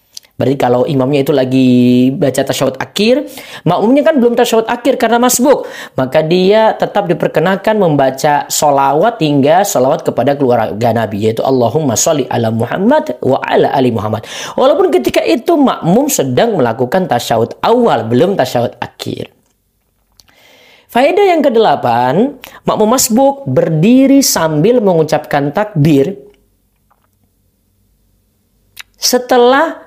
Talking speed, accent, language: 115 wpm, native, Indonesian